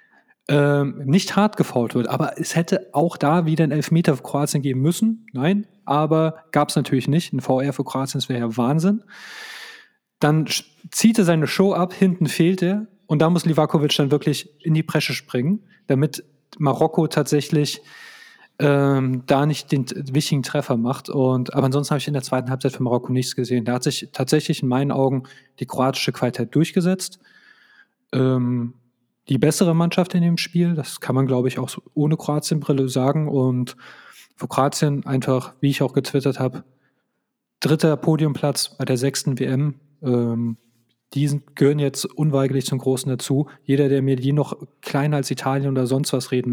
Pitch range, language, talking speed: 130-165 Hz, German, 175 wpm